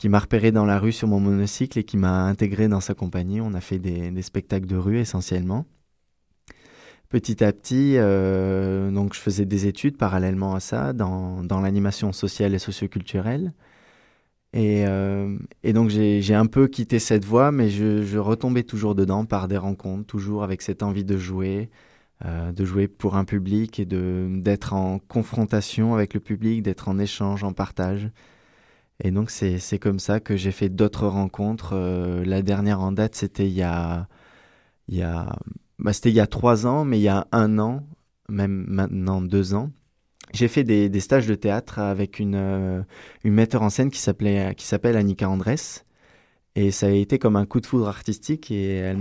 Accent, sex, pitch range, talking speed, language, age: French, male, 95-110 Hz, 195 wpm, French, 20-39